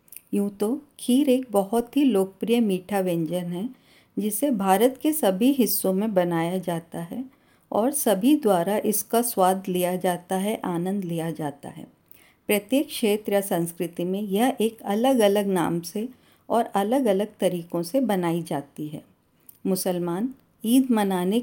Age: 50-69